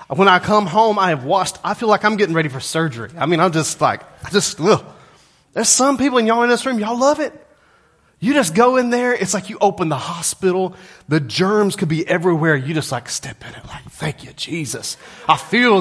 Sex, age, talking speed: male, 30-49, 235 wpm